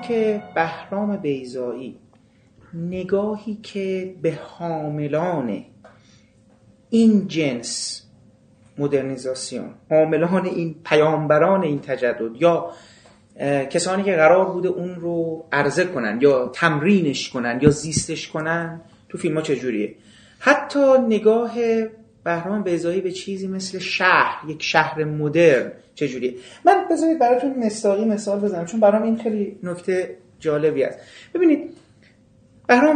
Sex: male